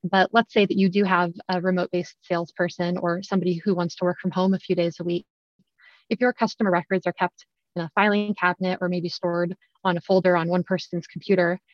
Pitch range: 175-200 Hz